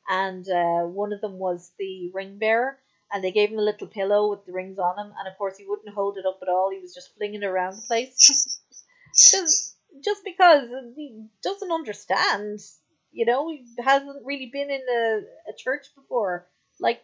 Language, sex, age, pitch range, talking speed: English, female, 30-49, 200-270 Hz, 195 wpm